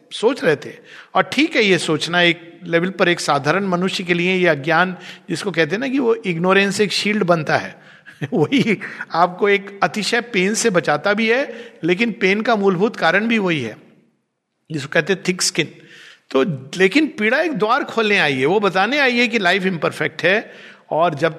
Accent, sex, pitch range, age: native, male, 160-210 Hz, 50-69